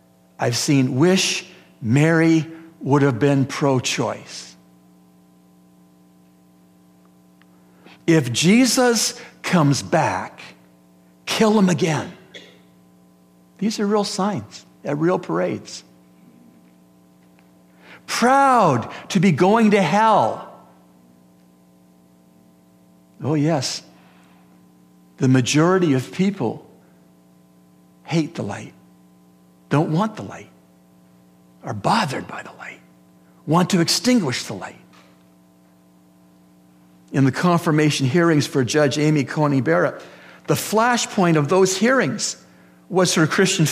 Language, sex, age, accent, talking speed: English, male, 60-79, American, 95 wpm